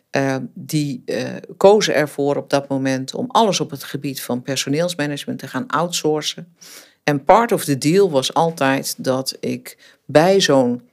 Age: 50-69